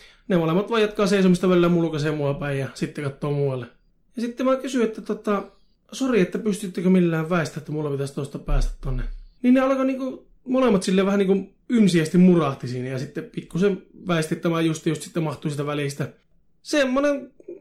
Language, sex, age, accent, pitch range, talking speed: Finnish, male, 20-39, native, 150-200 Hz, 180 wpm